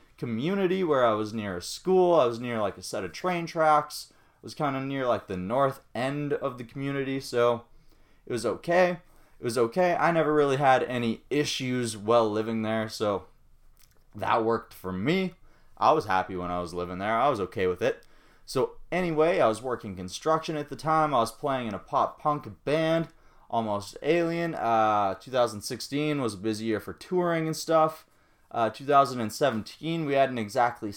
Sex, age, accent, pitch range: male, 20-39, American, 110-150 Hz